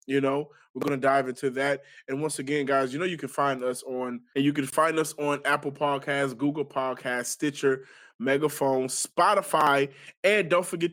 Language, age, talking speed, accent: English, 20-39, 190 wpm, American